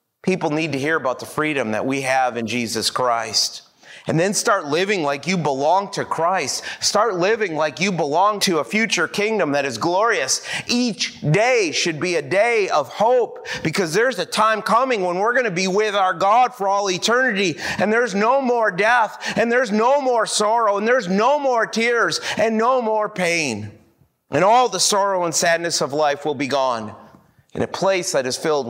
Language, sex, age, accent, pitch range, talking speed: English, male, 30-49, American, 140-210 Hz, 195 wpm